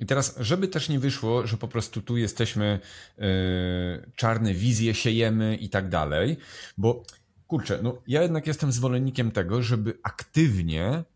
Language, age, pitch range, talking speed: Polish, 40-59, 100-150 Hz, 145 wpm